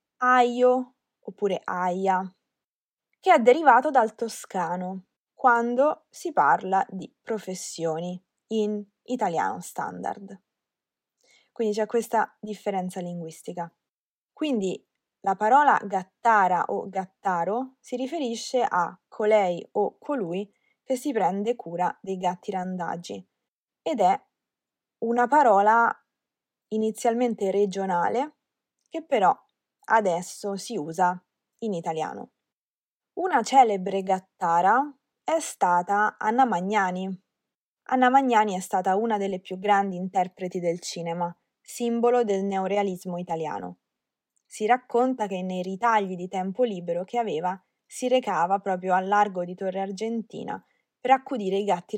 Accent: native